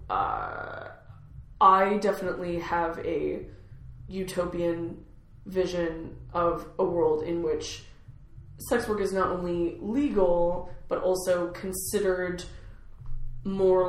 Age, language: 20-39, English